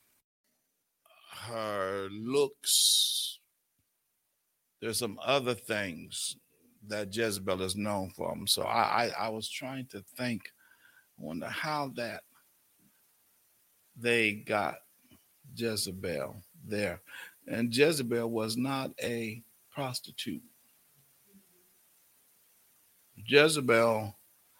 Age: 50-69